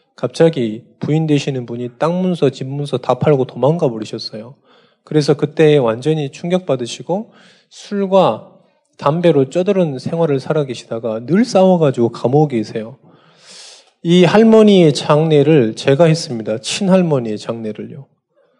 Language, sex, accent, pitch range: Korean, male, native, 125-170 Hz